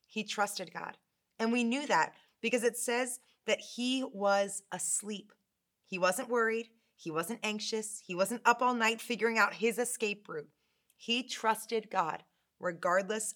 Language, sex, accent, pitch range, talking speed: English, female, American, 190-235 Hz, 155 wpm